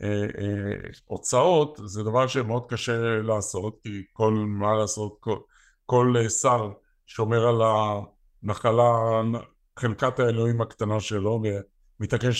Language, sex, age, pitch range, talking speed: Hebrew, male, 60-79, 110-135 Hz, 110 wpm